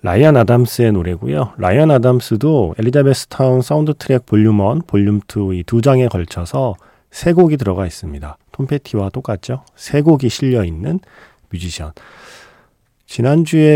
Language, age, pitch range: Korean, 40-59, 100-145 Hz